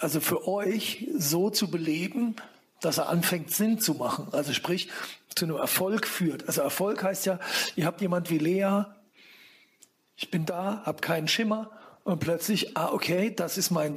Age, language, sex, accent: 50-69, German, male, German